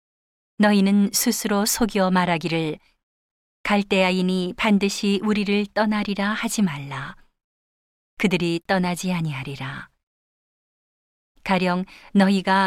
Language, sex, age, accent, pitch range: Korean, female, 40-59, native, 175-210 Hz